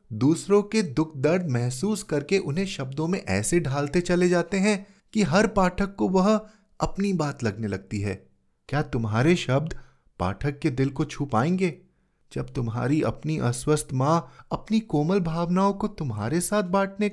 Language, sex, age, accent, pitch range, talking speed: Hindi, male, 20-39, native, 125-180 Hz, 155 wpm